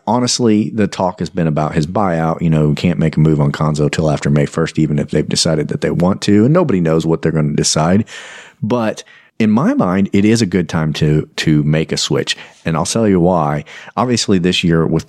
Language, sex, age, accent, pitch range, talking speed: English, male, 40-59, American, 80-115 Hz, 240 wpm